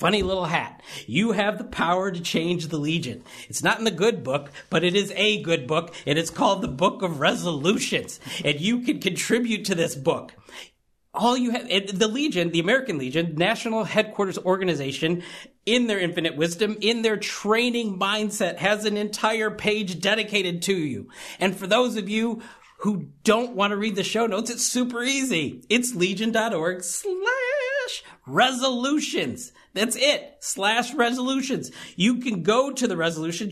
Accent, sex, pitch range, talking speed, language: American, male, 175-230 Hz, 165 wpm, English